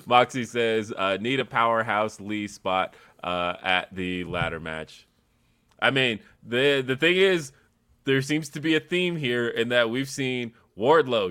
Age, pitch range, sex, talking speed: 20-39, 95-120 Hz, male, 165 wpm